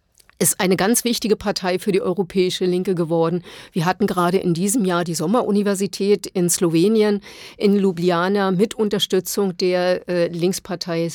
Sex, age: female, 50-69